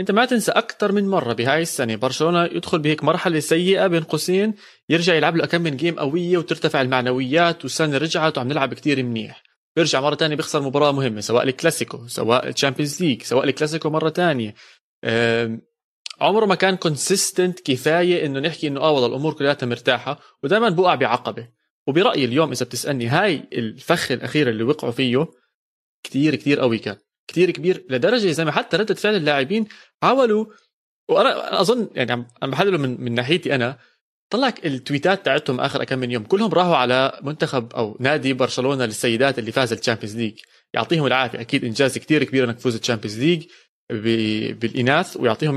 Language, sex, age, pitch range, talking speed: Arabic, male, 20-39, 125-170 Hz, 160 wpm